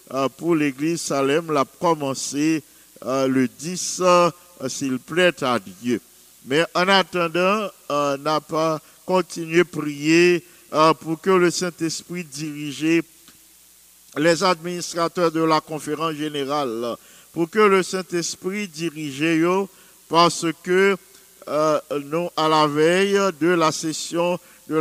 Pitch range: 150-175 Hz